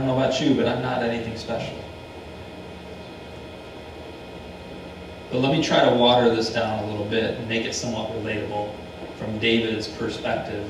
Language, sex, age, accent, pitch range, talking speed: English, male, 40-59, American, 90-125 Hz, 165 wpm